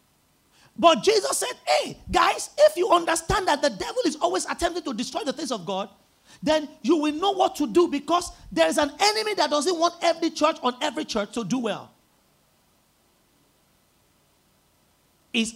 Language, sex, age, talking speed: English, male, 40-59, 170 wpm